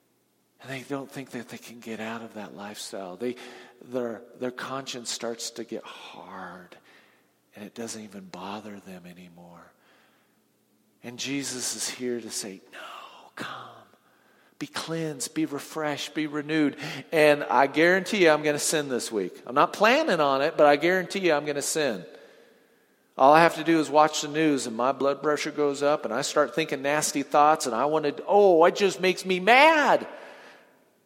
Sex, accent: male, American